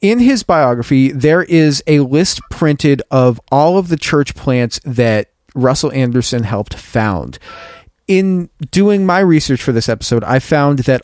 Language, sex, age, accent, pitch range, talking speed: English, male, 40-59, American, 120-145 Hz, 160 wpm